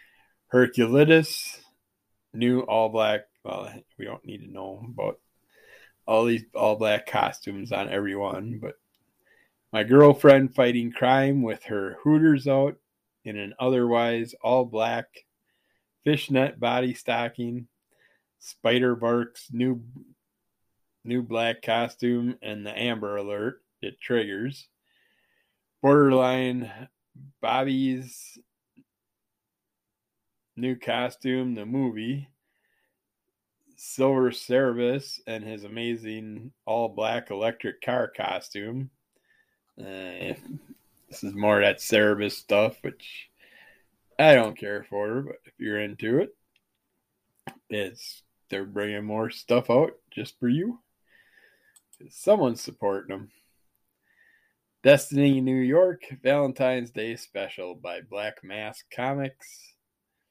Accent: American